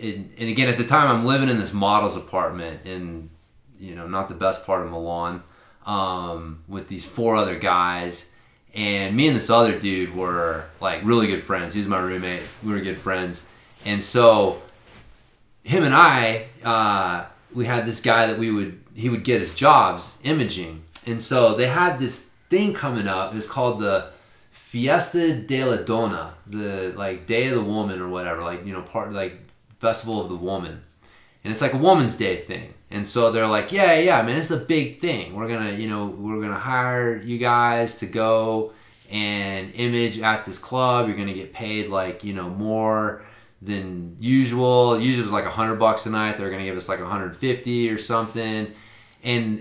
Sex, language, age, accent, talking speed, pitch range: male, English, 30-49, American, 200 wpm, 95-120 Hz